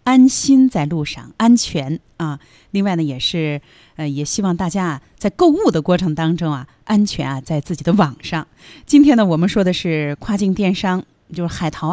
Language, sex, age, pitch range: Chinese, female, 30-49, 160-220 Hz